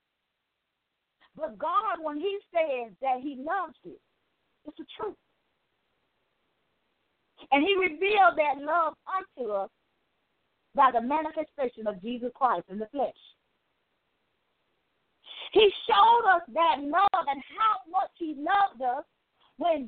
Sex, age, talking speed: female, 50-69, 125 wpm